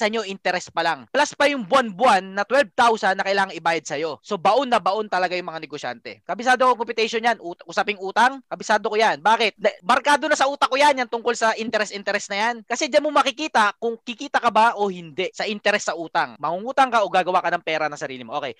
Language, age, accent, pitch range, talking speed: Filipino, 20-39, native, 185-265 Hz, 230 wpm